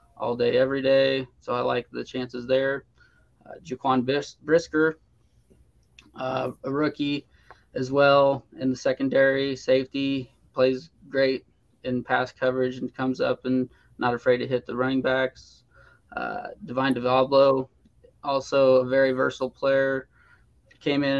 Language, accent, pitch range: English, American, 130-145 Hz